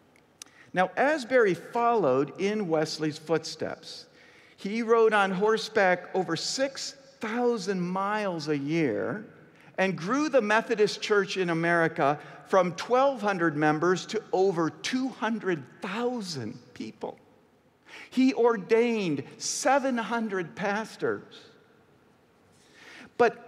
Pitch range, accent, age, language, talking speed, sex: 175-245 Hz, American, 50-69, English, 85 wpm, male